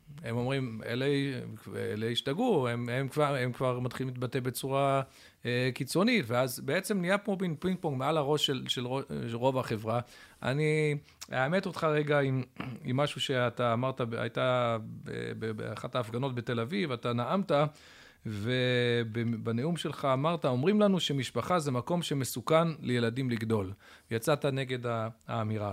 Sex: male